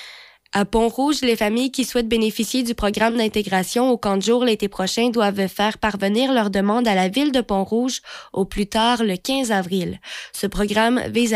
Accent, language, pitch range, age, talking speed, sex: Canadian, French, 200-235 Hz, 20-39, 185 wpm, female